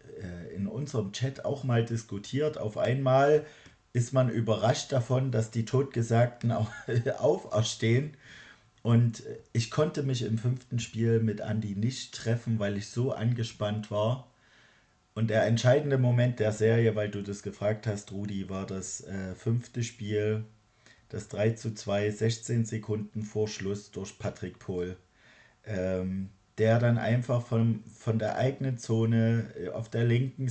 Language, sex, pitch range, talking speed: German, male, 105-120 Hz, 140 wpm